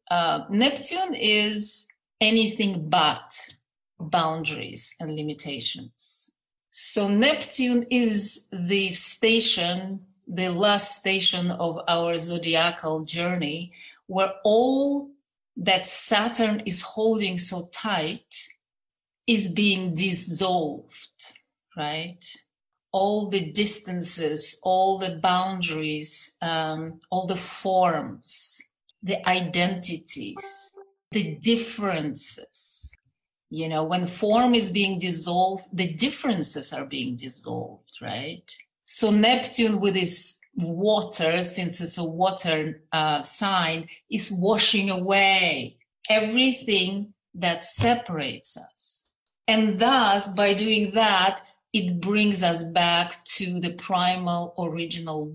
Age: 40-59